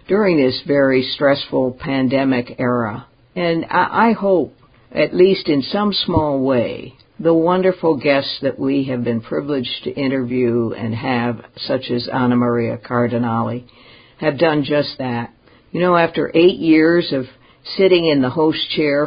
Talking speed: 150 wpm